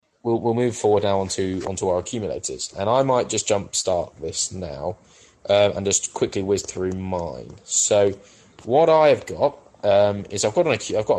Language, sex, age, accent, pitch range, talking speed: English, male, 20-39, British, 95-115 Hz, 180 wpm